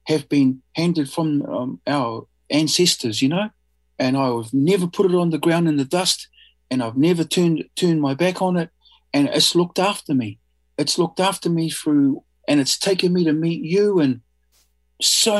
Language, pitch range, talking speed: English, 135-200 Hz, 185 wpm